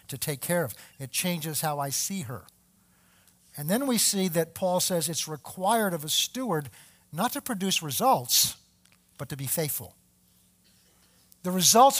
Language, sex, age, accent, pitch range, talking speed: English, male, 50-69, American, 150-230 Hz, 160 wpm